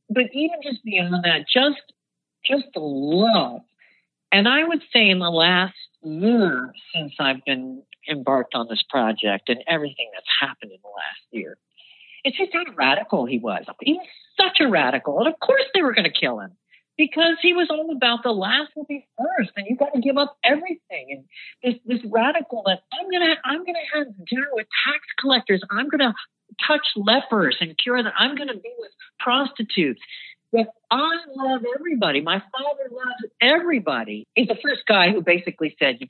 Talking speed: 195 wpm